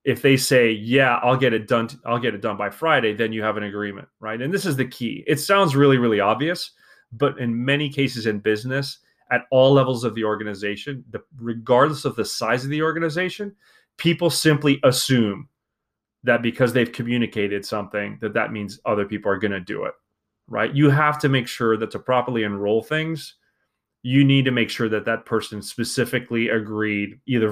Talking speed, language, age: 195 wpm, English, 30-49